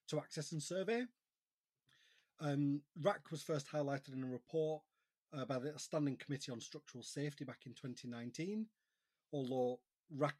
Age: 30-49